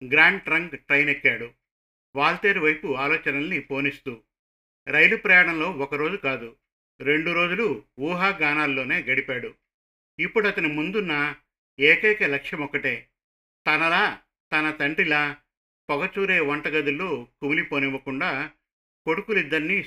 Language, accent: Telugu, native